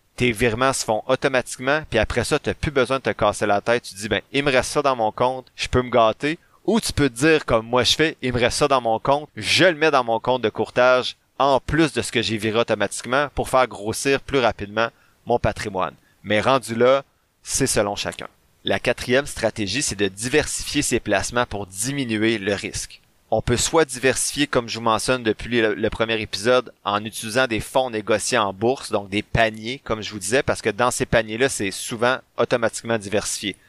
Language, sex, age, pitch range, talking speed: French, male, 30-49, 105-130 Hz, 225 wpm